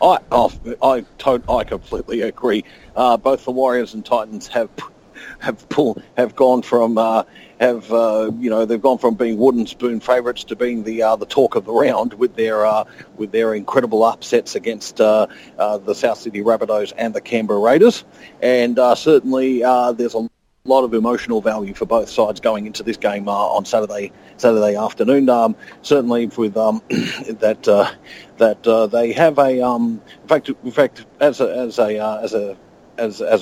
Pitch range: 110-130 Hz